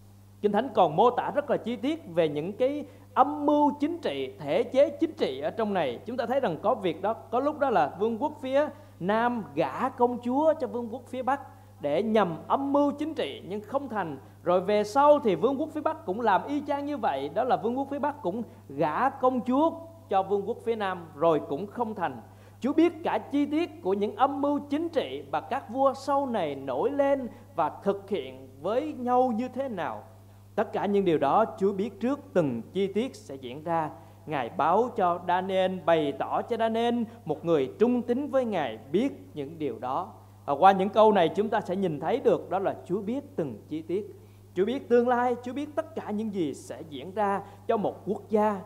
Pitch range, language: 165-265 Hz, Vietnamese